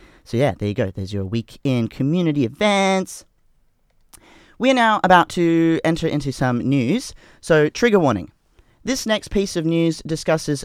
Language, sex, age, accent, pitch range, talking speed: English, male, 30-49, Australian, 120-155 Hz, 160 wpm